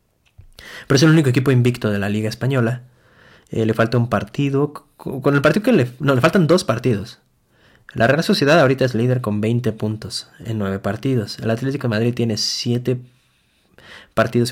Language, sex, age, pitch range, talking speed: Spanish, male, 20-39, 105-135 Hz, 180 wpm